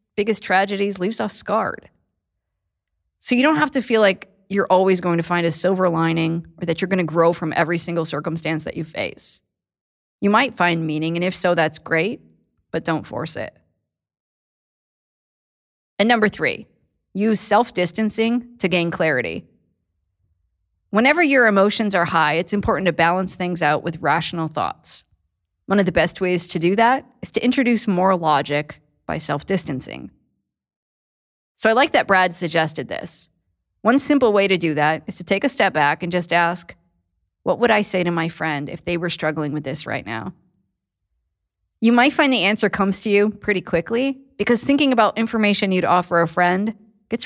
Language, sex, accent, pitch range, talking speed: English, female, American, 160-210 Hz, 175 wpm